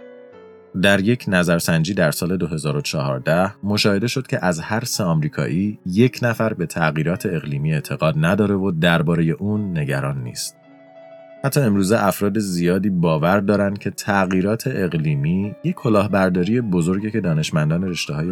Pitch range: 80-115 Hz